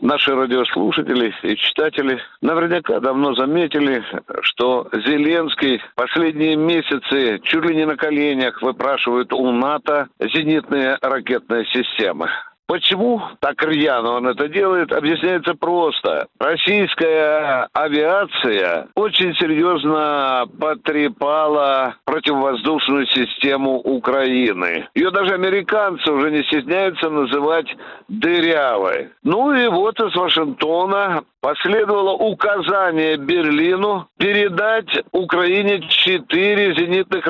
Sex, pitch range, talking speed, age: male, 145-200 Hz, 90 wpm, 60-79